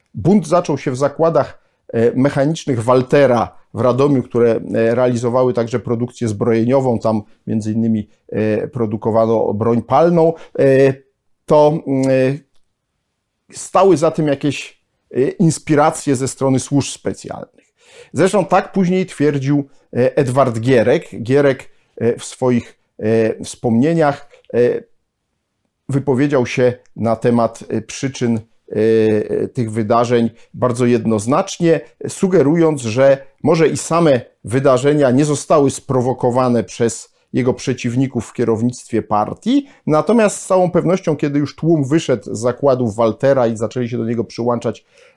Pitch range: 120-155 Hz